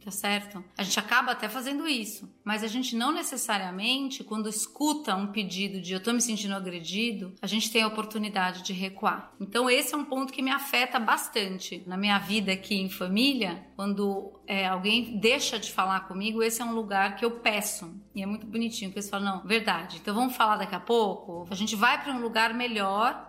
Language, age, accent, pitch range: Portuguese, 30-49, Brazilian, 195-235 Hz